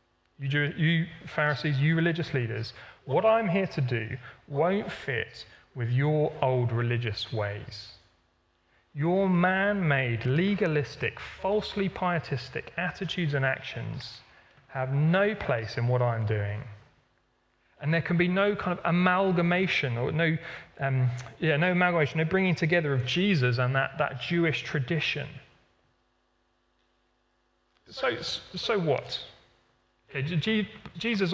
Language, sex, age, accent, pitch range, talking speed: English, male, 30-49, British, 120-165 Hz, 120 wpm